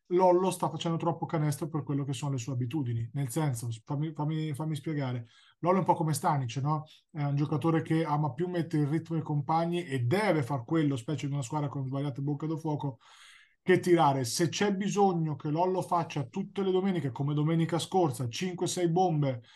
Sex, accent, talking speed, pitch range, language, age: male, native, 200 wpm, 140-170 Hz, Italian, 20-39